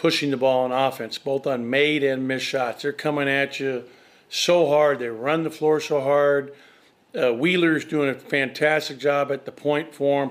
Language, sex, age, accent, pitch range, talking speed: English, male, 50-69, American, 135-150 Hz, 190 wpm